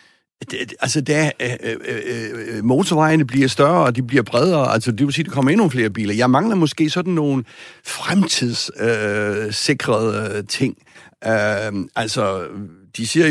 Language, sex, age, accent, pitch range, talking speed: Danish, male, 60-79, native, 115-155 Hz, 150 wpm